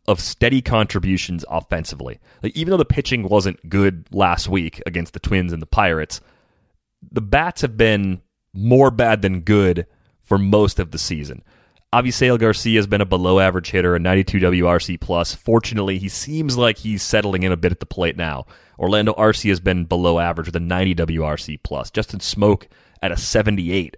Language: English